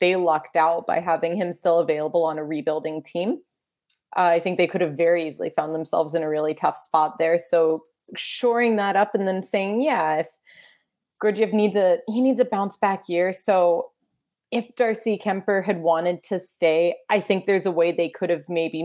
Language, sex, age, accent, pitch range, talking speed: English, female, 30-49, American, 165-210 Hz, 200 wpm